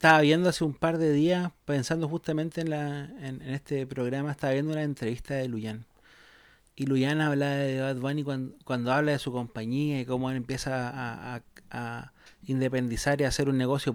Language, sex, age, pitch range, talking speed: Spanish, male, 30-49, 130-165 Hz, 200 wpm